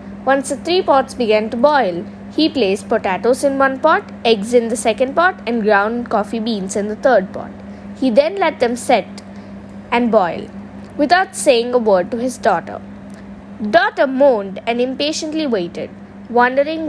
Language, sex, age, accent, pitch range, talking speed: English, female, 20-39, Indian, 205-275 Hz, 165 wpm